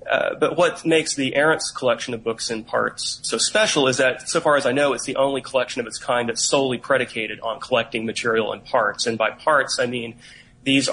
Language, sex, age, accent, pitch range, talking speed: English, male, 30-49, American, 115-130 Hz, 225 wpm